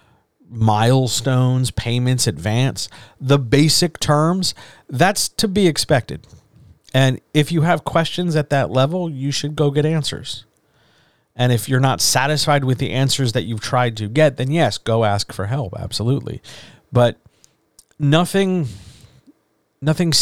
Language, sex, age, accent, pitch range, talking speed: English, male, 40-59, American, 110-145 Hz, 135 wpm